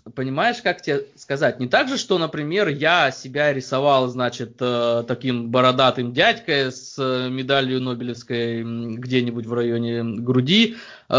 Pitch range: 125-160 Hz